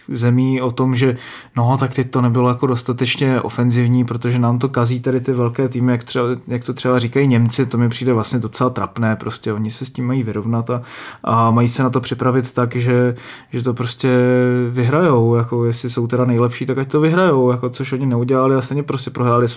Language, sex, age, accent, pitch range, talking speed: Czech, male, 20-39, native, 120-135 Hz, 220 wpm